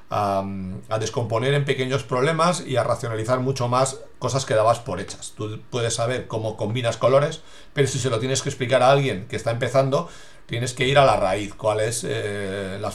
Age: 40-59